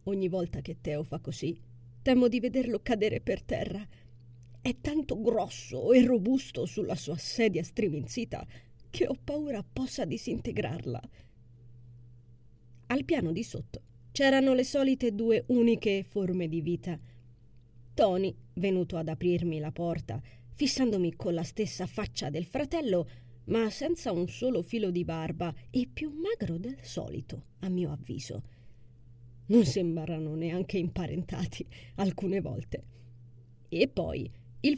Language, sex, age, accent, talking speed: Italian, female, 30-49, native, 130 wpm